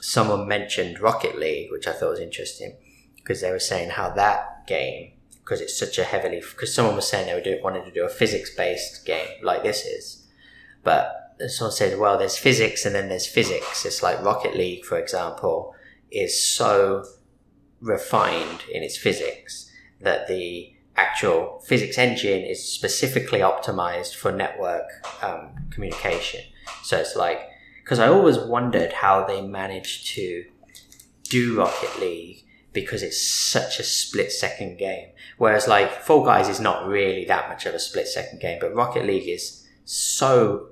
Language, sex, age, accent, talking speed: English, male, 20-39, British, 160 wpm